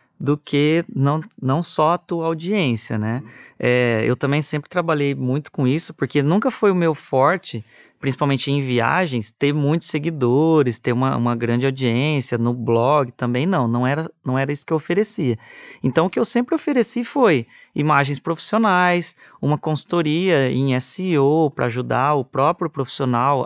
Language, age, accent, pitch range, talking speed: Portuguese, 20-39, Brazilian, 130-175 Hz, 160 wpm